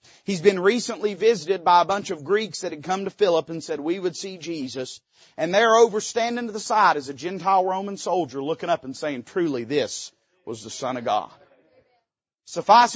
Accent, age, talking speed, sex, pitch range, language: American, 40-59, 200 wpm, male, 160-235 Hz, English